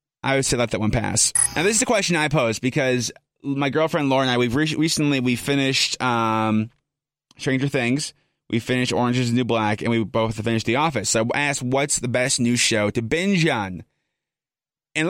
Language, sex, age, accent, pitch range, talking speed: English, male, 30-49, American, 120-145 Hz, 205 wpm